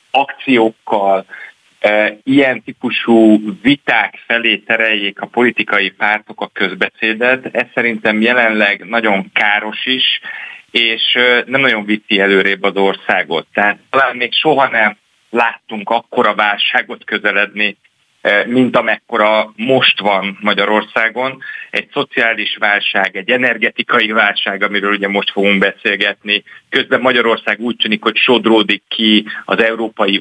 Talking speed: 120 wpm